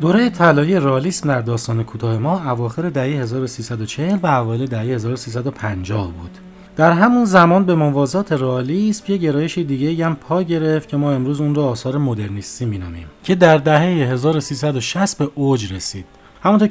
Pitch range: 110-155 Hz